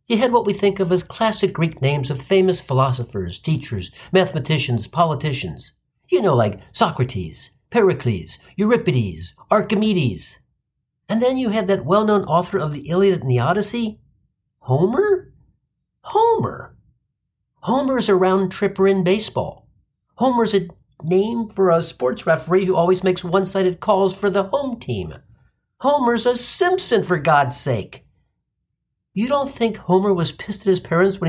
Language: English